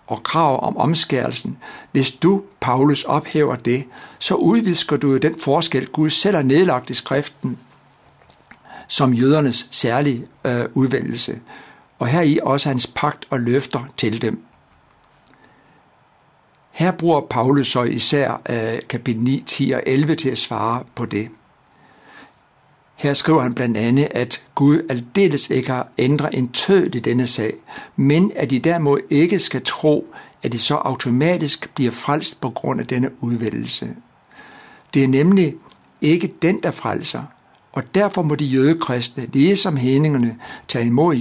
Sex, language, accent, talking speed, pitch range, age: male, Danish, native, 150 wpm, 125-155 Hz, 60-79